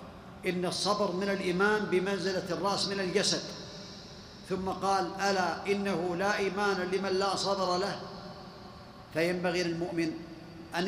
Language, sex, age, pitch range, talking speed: Arabic, male, 50-69, 180-205 Hz, 115 wpm